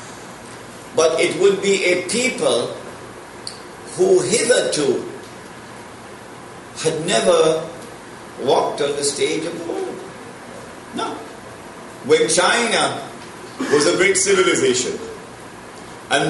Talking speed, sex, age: 90 wpm, male, 50-69